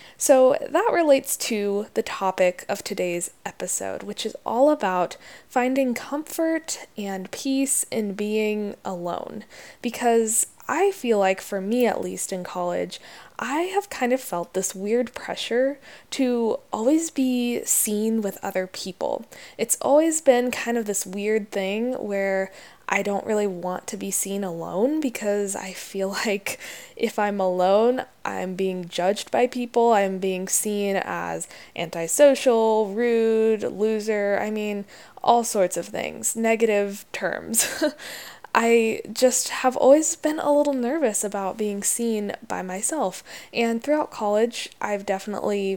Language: English